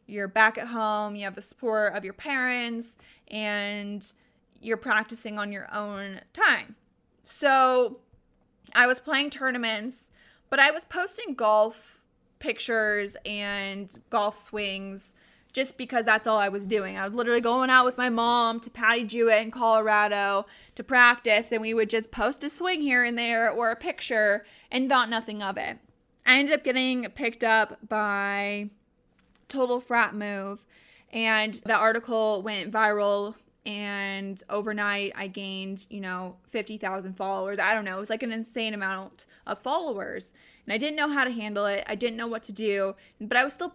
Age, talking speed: 20-39, 170 wpm